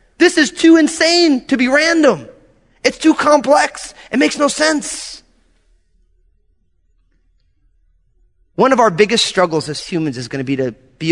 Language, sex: English, male